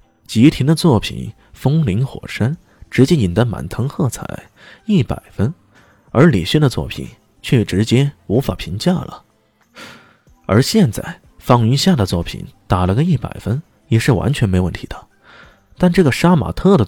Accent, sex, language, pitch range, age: native, male, Chinese, 95-145 Hz, 20-39